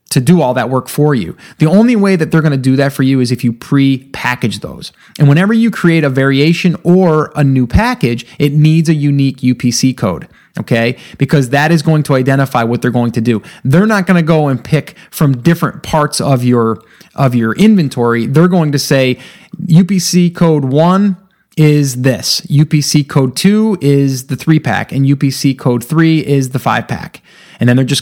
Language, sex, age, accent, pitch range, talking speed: English, male, 30-49, American, 125-160 Hz, 195 wpm